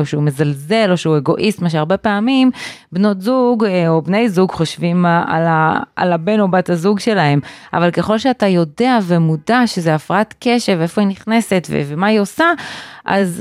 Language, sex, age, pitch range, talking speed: Hebrew, female, 30-49, 160-220 Hz, 160 wpm